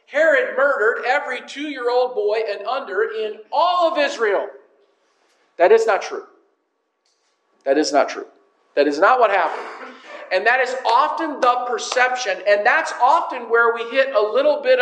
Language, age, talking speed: English, 50-69, 160 wpm